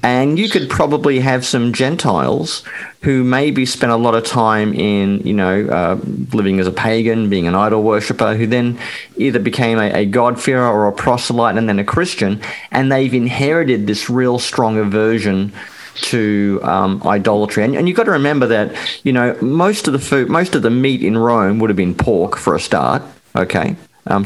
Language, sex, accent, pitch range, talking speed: English, male, Australian, 105-130 Hz, 195 wpm